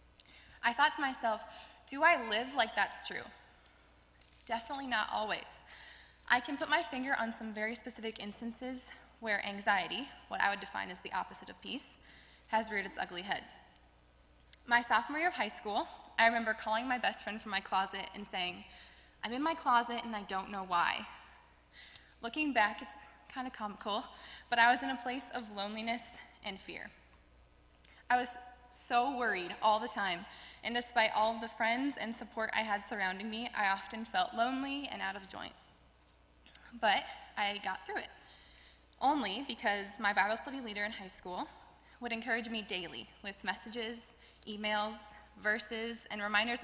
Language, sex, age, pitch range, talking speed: English, female, 20-39, 190-240 Hz, 170 wpm